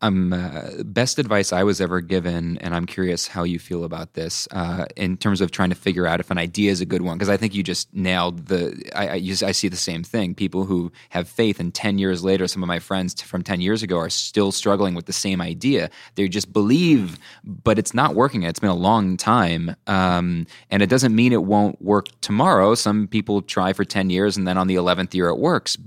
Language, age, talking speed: English, 20-39, 235 wpm